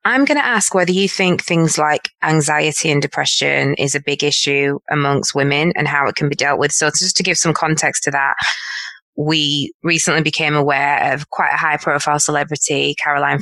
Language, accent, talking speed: English, British, 195 wpm